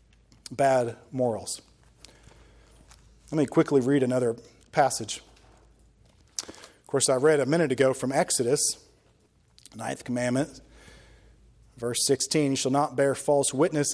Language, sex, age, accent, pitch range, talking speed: English, male, 40-59, American, 135-180 Hz, 115 wpm